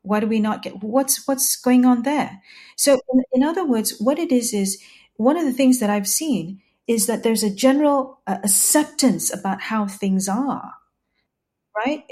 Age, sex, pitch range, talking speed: 40-59, female, 200-260 Hz, 190 wpm